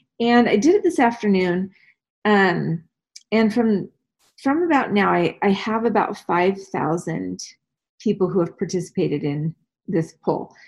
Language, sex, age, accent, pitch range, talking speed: English, female, 30-49, American, 175-230 Hz, 135 wpm